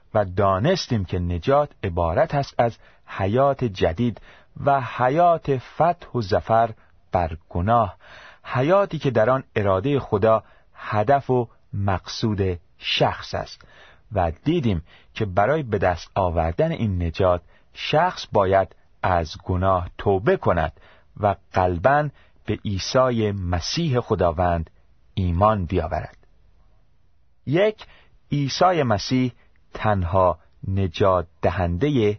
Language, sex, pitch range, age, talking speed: Persian, male, 90-130 Hz, 40-59, 105 wpm